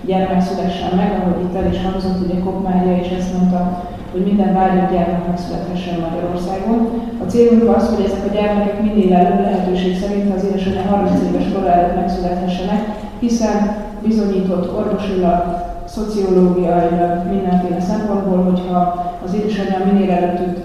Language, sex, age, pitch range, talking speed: Hungarian, female, 30-49, 180-200 Hz, 135 wpm